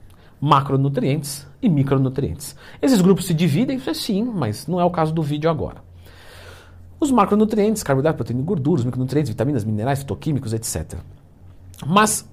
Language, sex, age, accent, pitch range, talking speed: Portuguese, male, 50-69, Brazilian, 100-165 Hz, 150 wpm